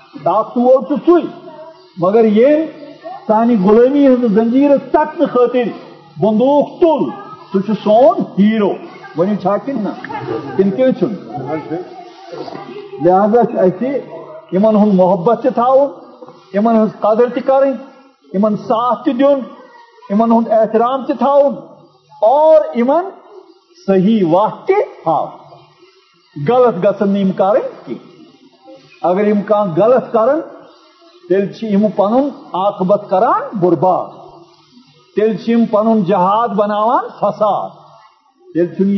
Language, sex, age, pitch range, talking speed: Urdu, male, 50-69, 205-280 Hz, 65 wpm